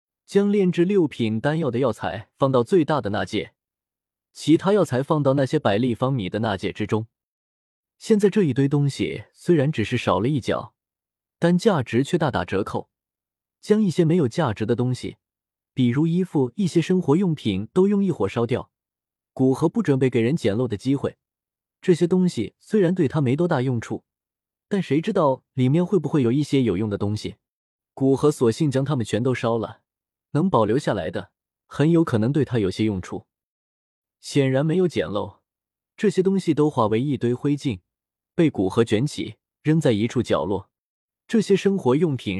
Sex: male